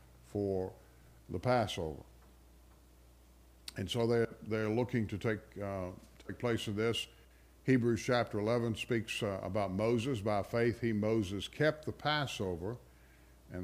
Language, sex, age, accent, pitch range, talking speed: English, male, 60-79, American, 90-120 Hz, 130 wpm